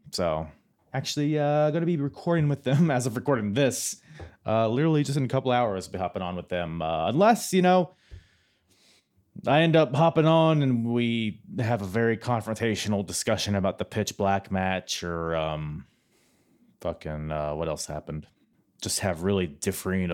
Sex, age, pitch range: male, 30-49, 95-145 Hz